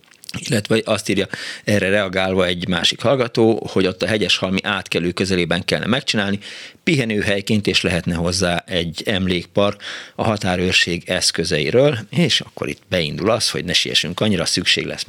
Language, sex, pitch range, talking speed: Hungarian, male, 85-110 Hz, 145 wpm